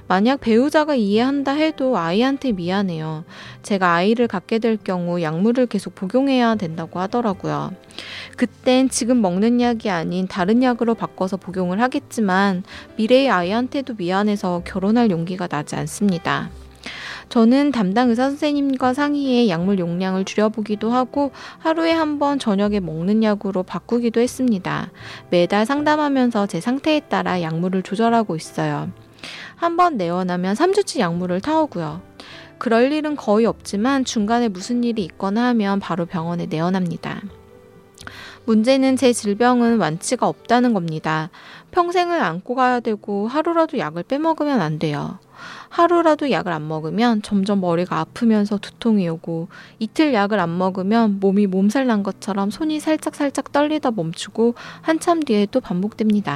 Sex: female